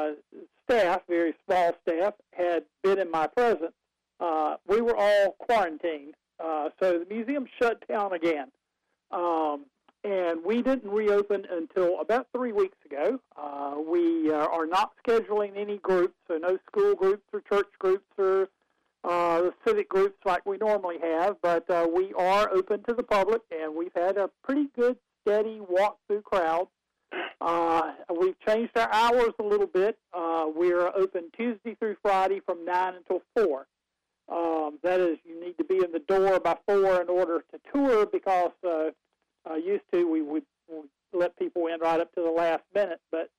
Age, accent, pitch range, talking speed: 50-69, American, 170-210 Hz, 165 wpm